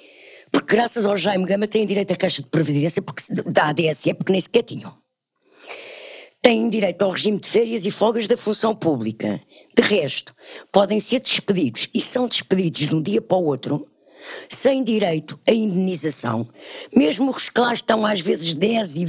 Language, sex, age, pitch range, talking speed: Portuguese, female, 50-69, 160-225 Hz, 180 wpm